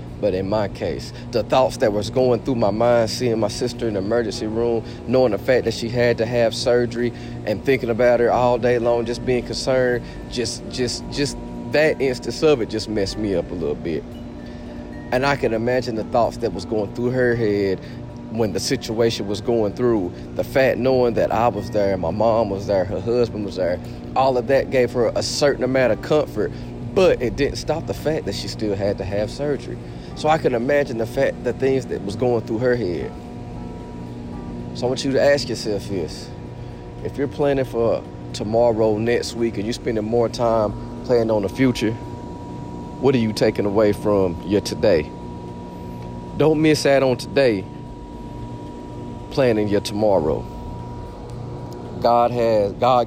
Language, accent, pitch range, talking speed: English, American, 85-120 Hz, 185 wpm